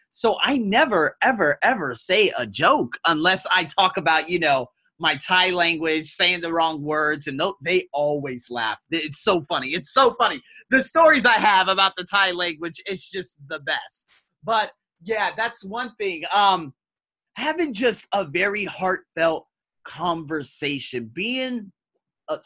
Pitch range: 140-200 Hz